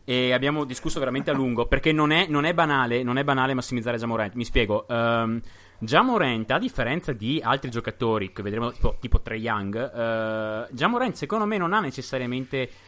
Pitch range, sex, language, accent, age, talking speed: 115-155 Hz, male, Italian, native, 30-49, 170 wpm